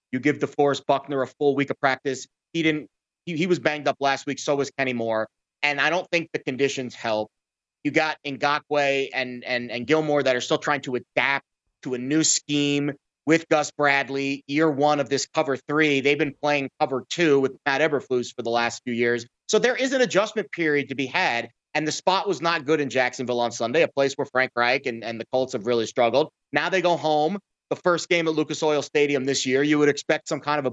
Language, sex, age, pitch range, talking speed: English, male, 30-49, 135-170 Hz, 230 wpm